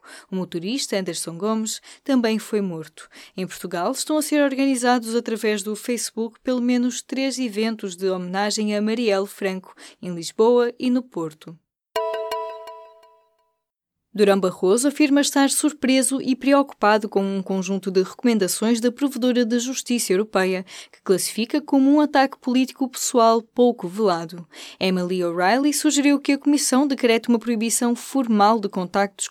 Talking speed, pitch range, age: 140 wpm, 190-255 Hz, 10-29